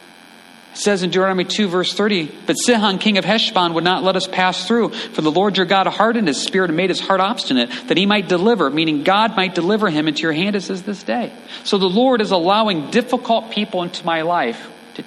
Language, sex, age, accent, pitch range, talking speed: English, male, 40-59, American, 155-195 Hz, 225 wpm